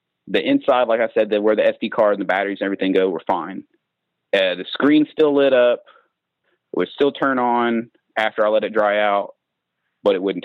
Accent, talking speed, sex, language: American, 220 wpm, male, English